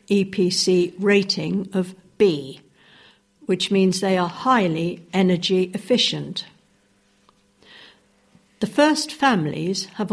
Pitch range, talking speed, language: 180-215 Hz, 90 wpm, English